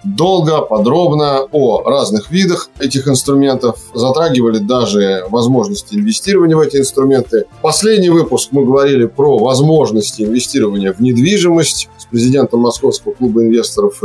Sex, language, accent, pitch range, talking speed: male, Russian, native, 125-175 Hz, 120 wpm